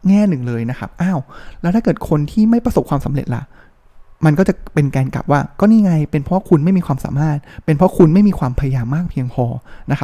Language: Thai